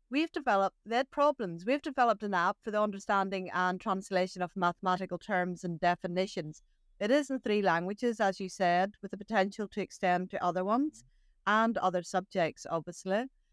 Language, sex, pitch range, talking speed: English, female, 185-240 Hz, 170 wpm